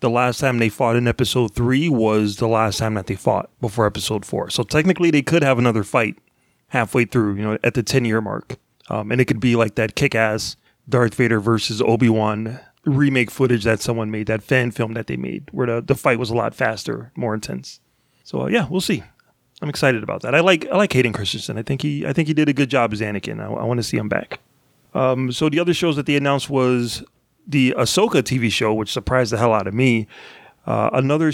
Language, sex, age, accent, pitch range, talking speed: English, male, 30-49, American, 115-135 Hz, 235 wpm